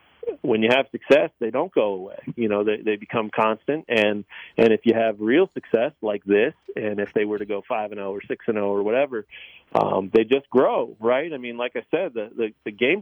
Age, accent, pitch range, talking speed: 40-59, American, 105-130 Hz, 240 wpm